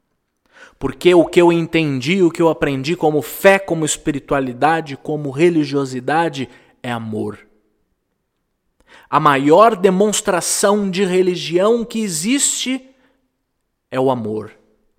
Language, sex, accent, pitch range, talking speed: Portuguese, male, Brazilian, 135-195 Hz, 110 wpm